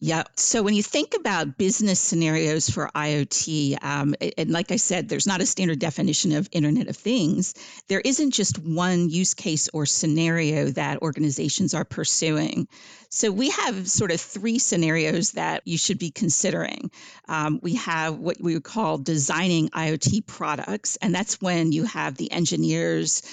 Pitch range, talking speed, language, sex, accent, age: 150-180 Hz, 165 wpm, English, female, American, 50-69